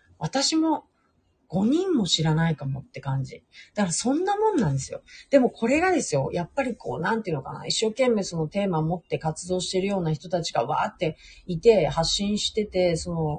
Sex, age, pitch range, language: female, 40-59, 155-220 Hz, Japanese